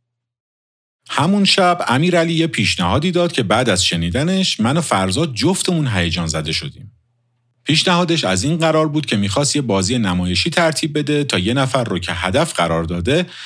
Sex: male